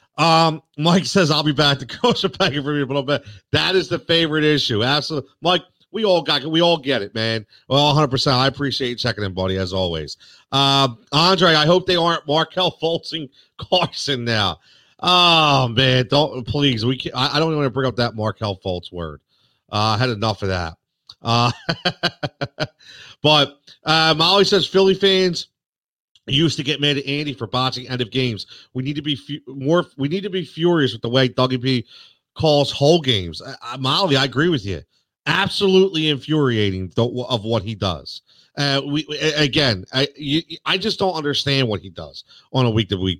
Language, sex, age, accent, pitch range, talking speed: English, male, 40-59, American, 120-160 Hz, 195 wpm